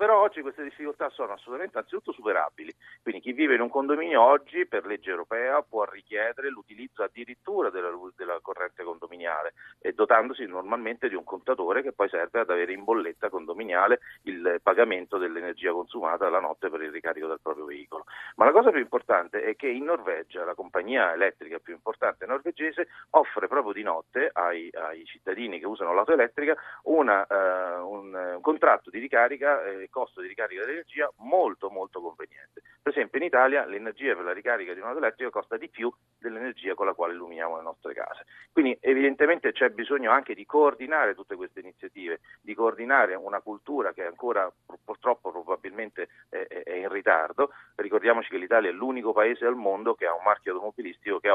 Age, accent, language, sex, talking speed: 40-59, native, Italian, male, 175 wpm